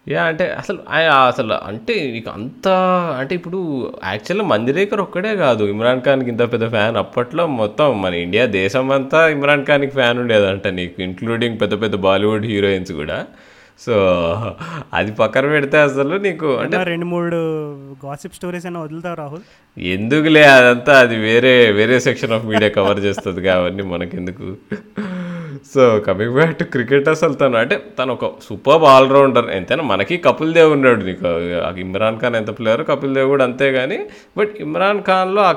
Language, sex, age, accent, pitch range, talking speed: Telugu, male, 20-39, native, 110-145 Hz, 150 wpm